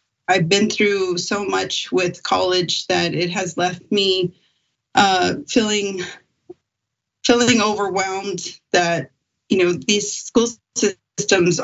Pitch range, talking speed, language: 175-210 Hz, 115 wpm, English